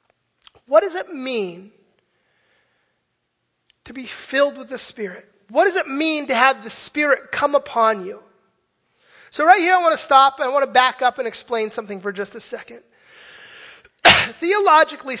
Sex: male